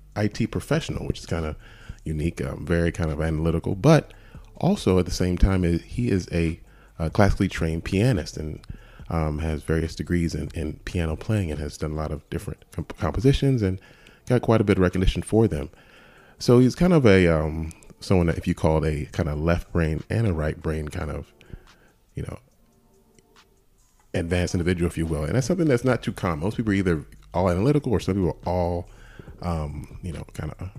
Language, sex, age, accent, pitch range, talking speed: English, male, 30-49, American, 85-110 Hz, 205 wpm